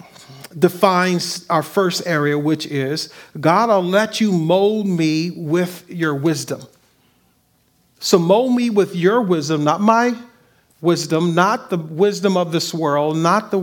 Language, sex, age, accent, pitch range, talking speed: English, male, 50-69, American, 160-205 Hz, 140 wpm